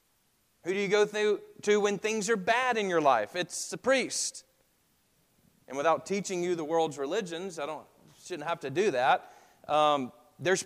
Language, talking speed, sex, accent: English, 175 wpm, male, American